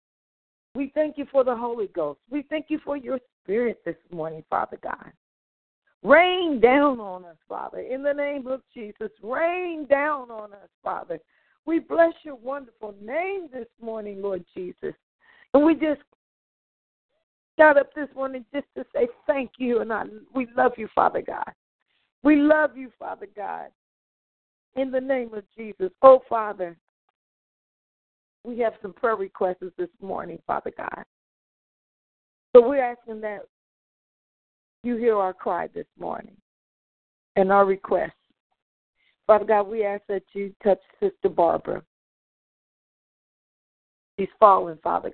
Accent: American